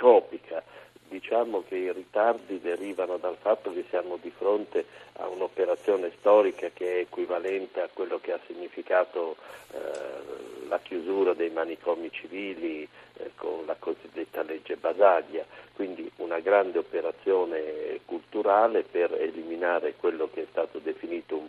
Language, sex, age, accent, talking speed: Italian, male, 50-69, native, 130 wpm